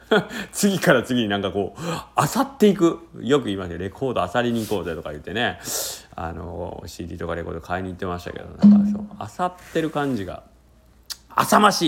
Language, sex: Japanese, male